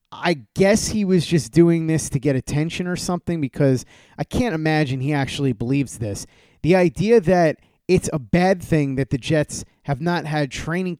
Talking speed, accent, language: 185 wpm, American, English